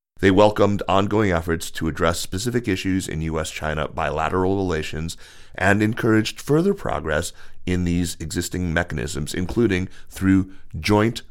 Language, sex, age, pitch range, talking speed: English, male, 30-49, 80-95 Hz, 120 wpm